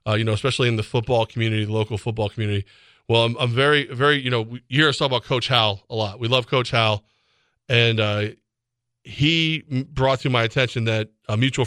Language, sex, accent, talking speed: English, male, American, 220 wpm